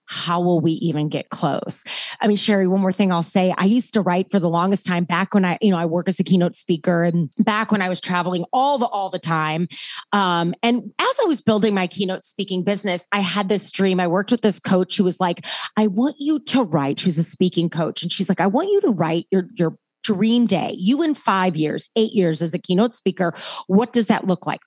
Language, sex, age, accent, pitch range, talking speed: English, female, 30-49, American, 175-225 Hz, 250 wpm